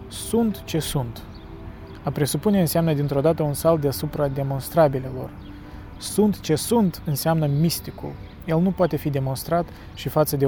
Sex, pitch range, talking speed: male, 130-160 Hz, 145 wpm